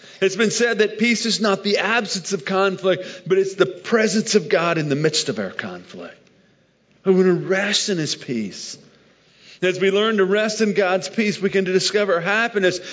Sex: male